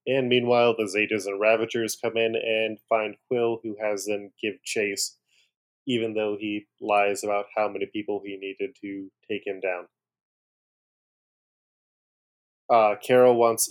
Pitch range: 110-125 Hz